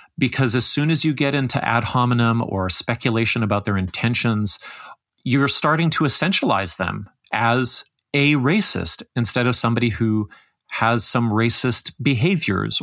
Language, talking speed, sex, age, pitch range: English, 140 wpm, male, 40-59, 110-140 Hz